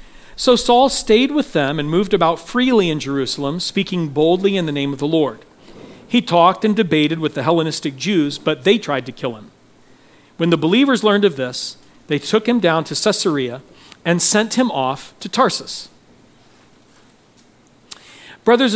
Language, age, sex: English, 40-59, male